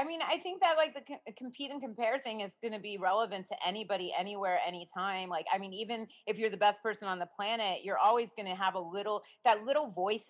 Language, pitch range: English, 195-255 Hz